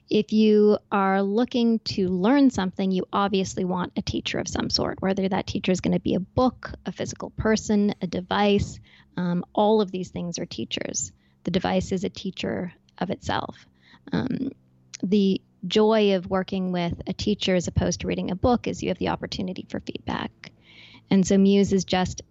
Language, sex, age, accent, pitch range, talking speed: English, female, 10-29, American, 180-205 Hz, 185 wpm